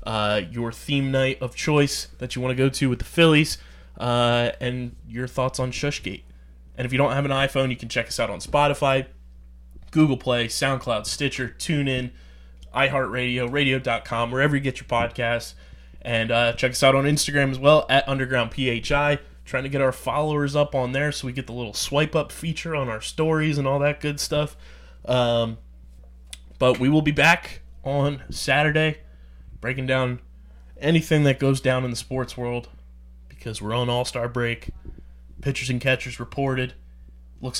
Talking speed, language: 175 wpm, English